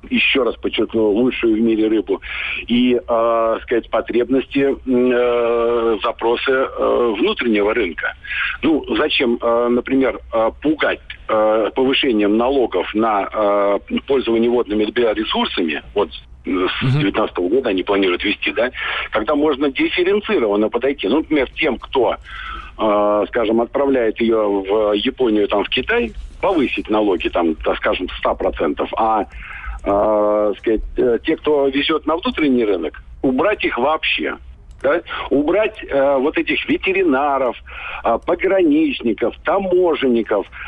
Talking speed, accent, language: 120 wpm, native, Russian